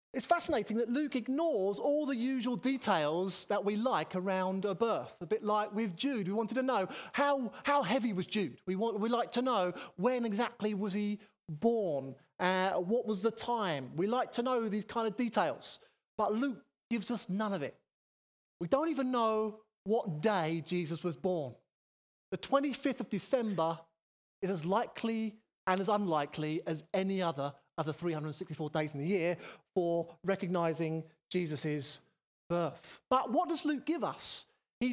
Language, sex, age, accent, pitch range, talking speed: English, male, 30-49, British, 175-240 Hz, 170 wpm